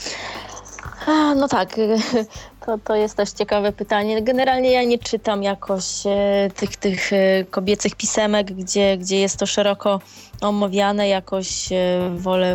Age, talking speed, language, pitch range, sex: 20-39, 120 wpm, Polish, 195-220 Hz, female